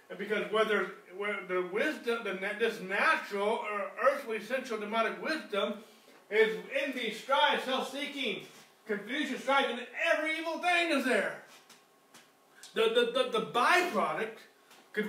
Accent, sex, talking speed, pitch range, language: American, male, 120 wpm, 210-280 Hz, English